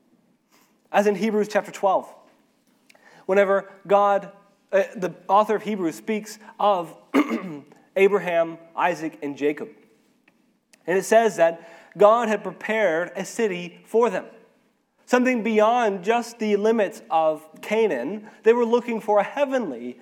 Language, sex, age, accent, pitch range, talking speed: English, male, 30-49, American, 185-235 Hz, 125 wpm